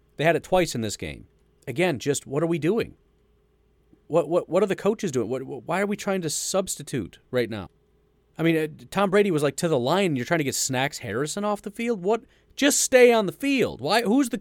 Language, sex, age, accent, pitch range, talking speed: English, male, 30-49, American, 120-185 Hz, 240 wpm